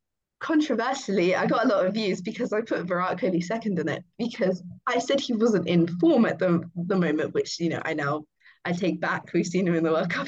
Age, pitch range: 20-39, 175-220 Hz